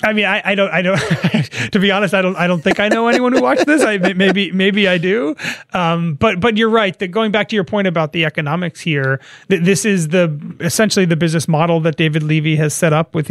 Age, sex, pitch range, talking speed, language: 30-49, male, 160-195 Hz, 255 wpm, English